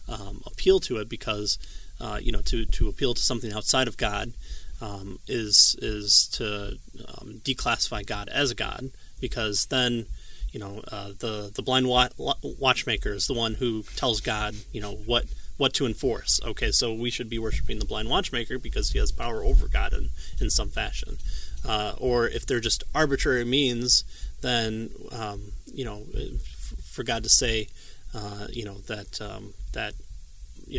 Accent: American